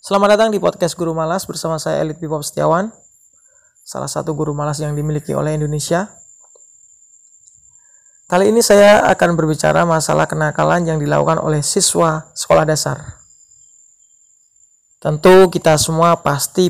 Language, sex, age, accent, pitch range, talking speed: Indonesian, male, 20-39, native, 130-175 Hz, 130 wpm